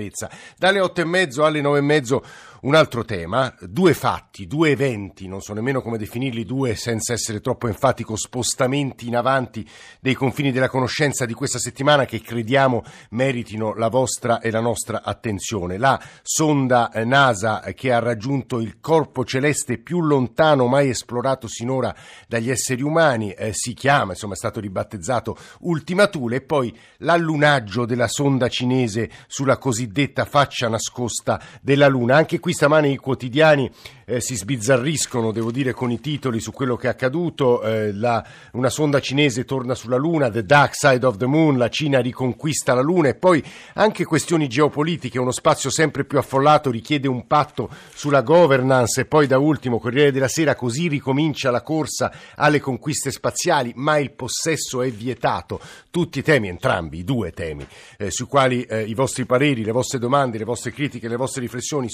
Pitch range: 120-145 Hz